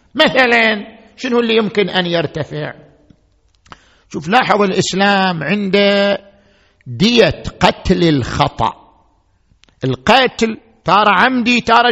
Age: 50-69